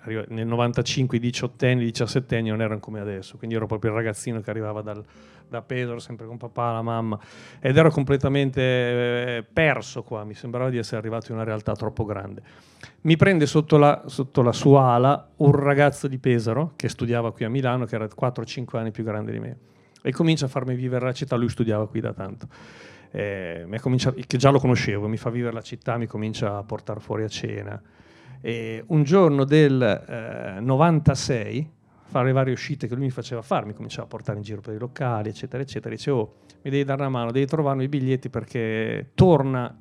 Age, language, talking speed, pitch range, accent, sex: 40-59, Italian, 200 wpm, 110-135 Hz, native, male